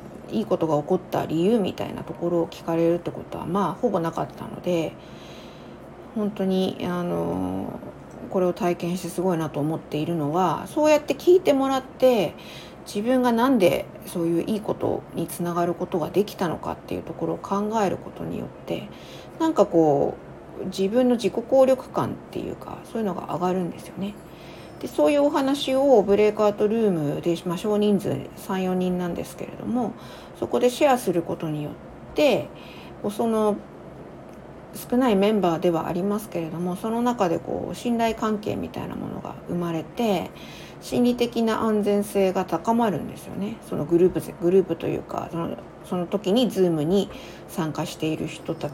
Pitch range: 170-225 Hz